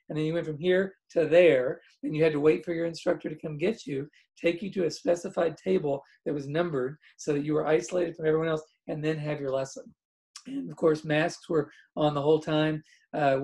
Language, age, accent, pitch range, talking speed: English, 40-59, American, 150-180 Hz, 230 wpm